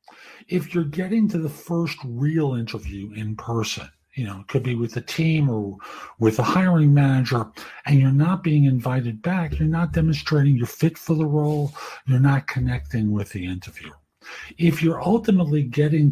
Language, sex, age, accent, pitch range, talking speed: English, male, 50-69, American, 115-155 Hz, 175 wpm